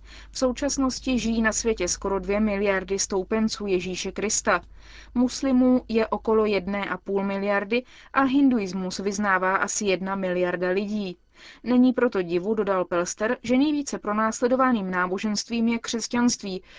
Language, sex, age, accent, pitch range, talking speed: Czech, female, 20-39, native, 190-230 Hz, 130 wpm